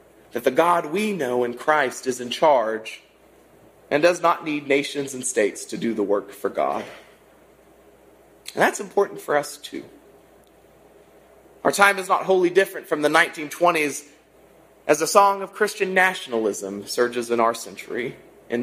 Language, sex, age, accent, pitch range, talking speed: English, male, 30-49, American, 125-200 Hz, 160 wpm